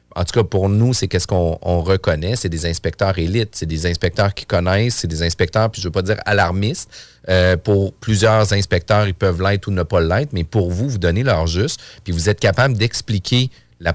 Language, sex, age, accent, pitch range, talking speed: French, male, 40-59, Canadian, 95-115 Hz, 230 wpm